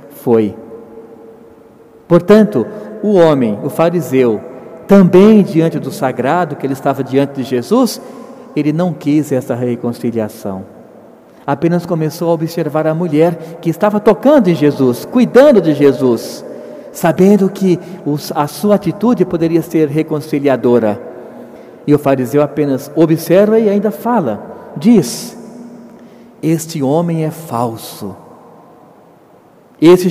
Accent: Brazilian